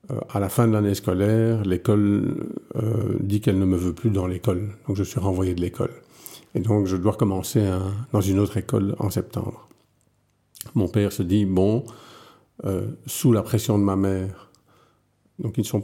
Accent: French